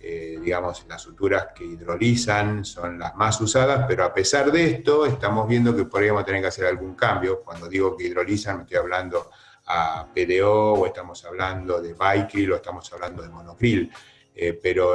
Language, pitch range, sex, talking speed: Spanish, 95-115 Hz, male, 180 wpm